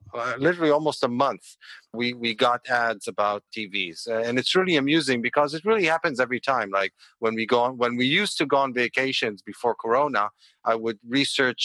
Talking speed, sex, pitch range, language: 200 wpm, male, 110-130 Hz, English